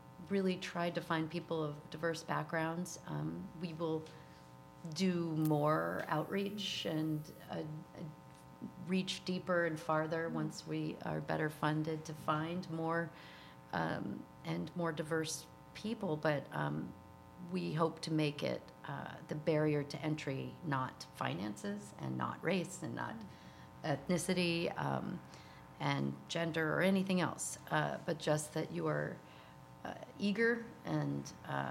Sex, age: female, 40-59